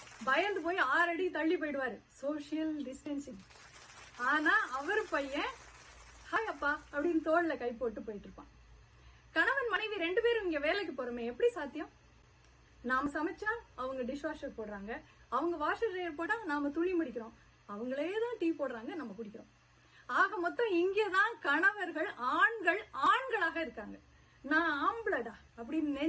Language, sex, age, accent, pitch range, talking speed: Tamil, female, 30-49, native, 285-385 Hz, 55 wpm